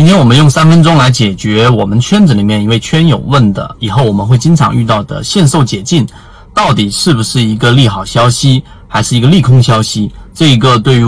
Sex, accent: male, native